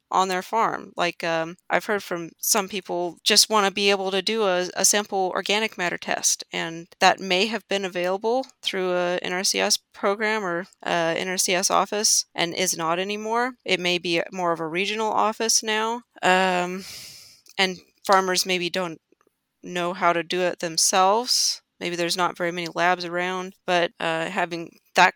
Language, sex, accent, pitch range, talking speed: English, female, American, 170-195 Hz, 170 wpm